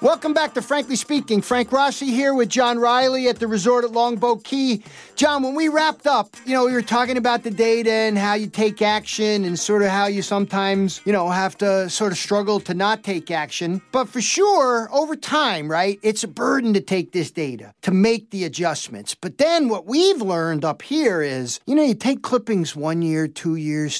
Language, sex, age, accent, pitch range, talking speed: English, male, 50-69, American, 170-235 Hz, 215 wpm